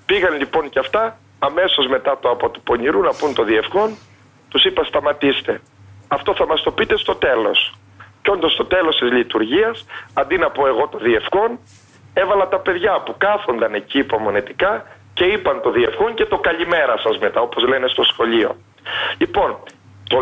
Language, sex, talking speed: Greek, male, 170 wpm